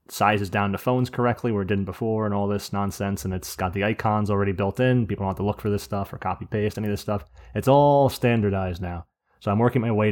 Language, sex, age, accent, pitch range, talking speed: English, male, 20-39, American, 100-120 Hz, 265 wpm